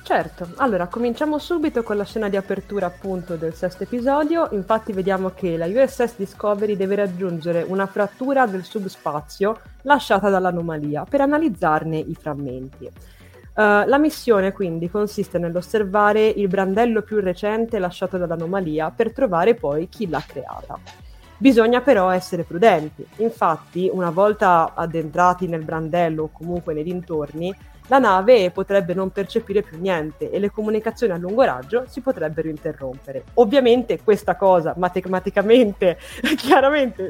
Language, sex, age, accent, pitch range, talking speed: Italian, female, 20-39, native, 170-225 Hz, 135 wpm